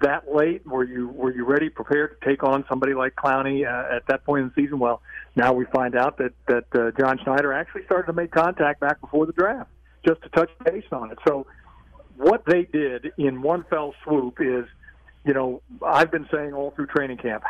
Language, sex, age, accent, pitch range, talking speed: English, male, 50-69, American, 125-150 Hz, 220 wpm